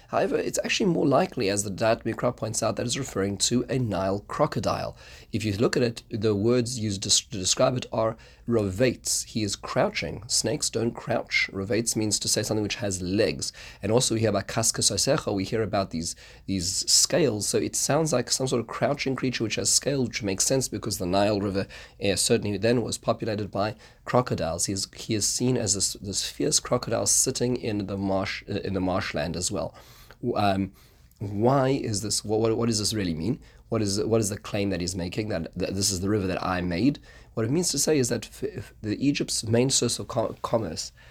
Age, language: 30-49, English